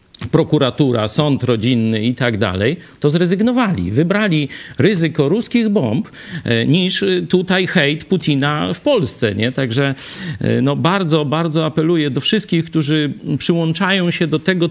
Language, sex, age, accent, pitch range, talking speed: Polish, male, 50-69, native, 125-165 Hz, 125 wpm